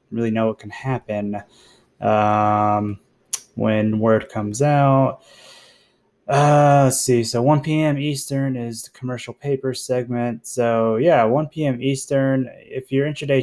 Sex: male